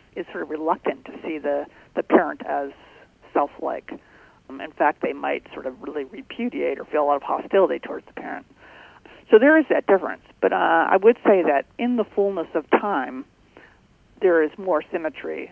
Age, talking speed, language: 50-69, 185 wpm, English